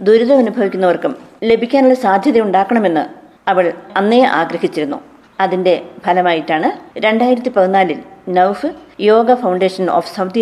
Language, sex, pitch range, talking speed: Malayalam, female, 180-235 Hz, 85 wpm